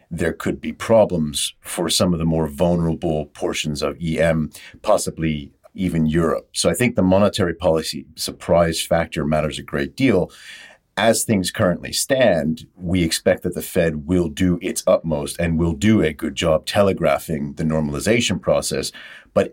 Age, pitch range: 50-69, 80-90 Hz